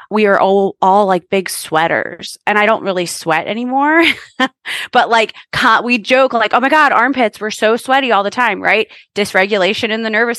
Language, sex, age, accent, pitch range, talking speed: English, female, 20-39, American, 170-225 Hz, 190 wpm